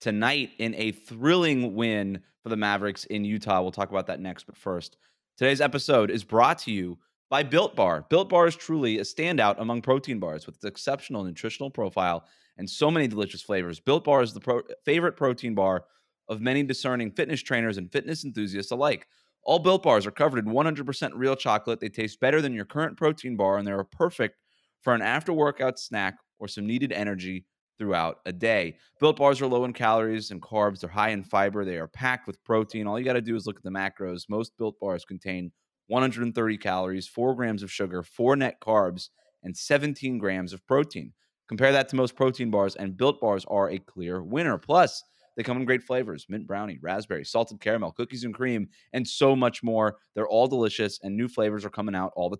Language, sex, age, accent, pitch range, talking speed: English, male, 30-49, American, 100-135 Hz, 205 wpm